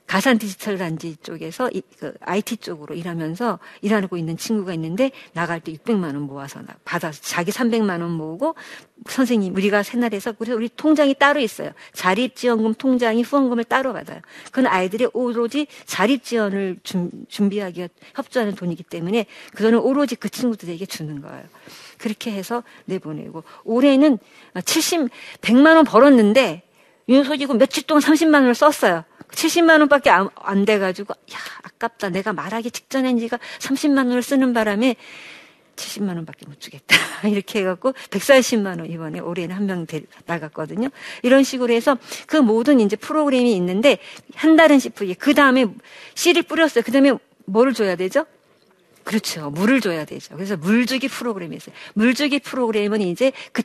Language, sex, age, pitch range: Korean, female, 50-69, 190-265 Hz